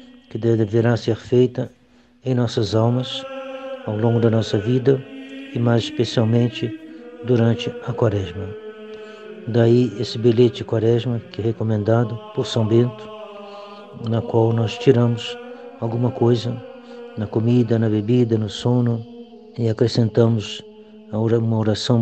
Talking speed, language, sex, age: 125 wpm, Portuguese, male, 60-79